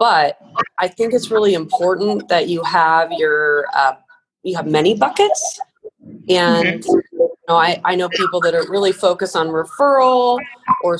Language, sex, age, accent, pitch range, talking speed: English, female, 30-49, American, 160-255 Hz, 160 wpm